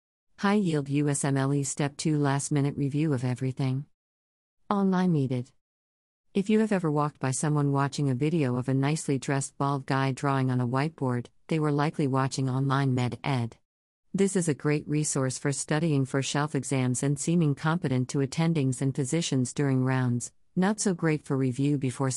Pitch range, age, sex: 130-155 Hz, 50-69, female